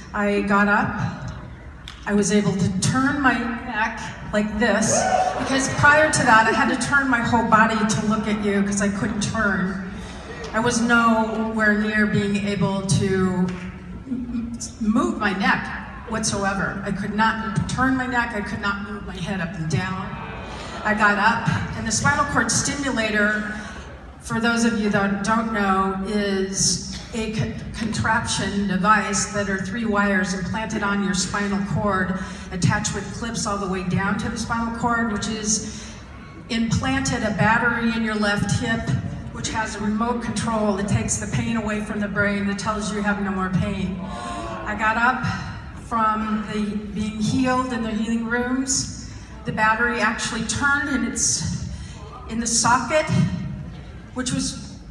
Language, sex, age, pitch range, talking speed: English, female, 40-59, 200-230 Hz, 160 wpm